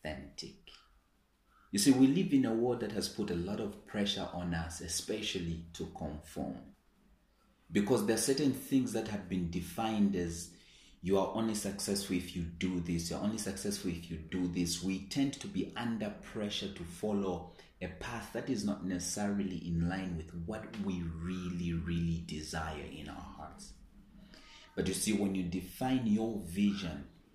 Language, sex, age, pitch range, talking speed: English, male, 30-49, 85-110 Hz, 170 wpm